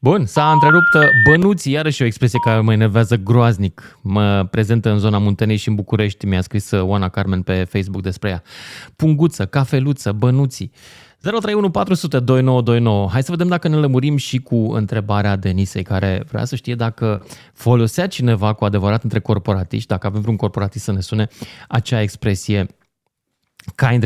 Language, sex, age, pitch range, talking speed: Romanian, male, 20-39, 105-140 Hz, 155 wpm